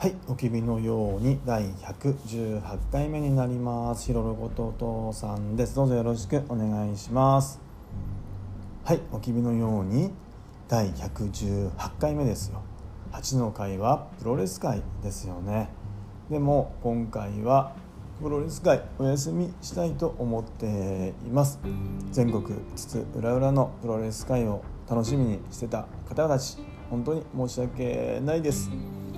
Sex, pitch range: male, 100-125 Hz